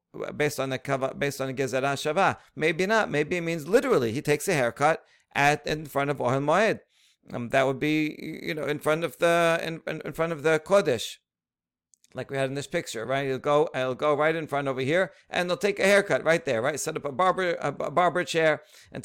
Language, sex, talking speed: English, male, 220 wpm